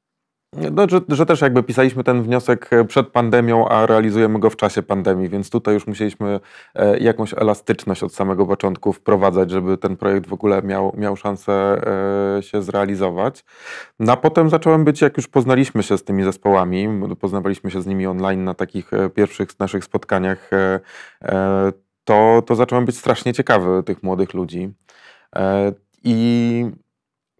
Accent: native